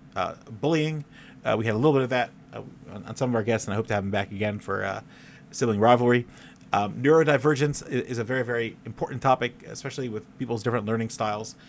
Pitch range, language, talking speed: 110-135 Hz, English, 225 wpm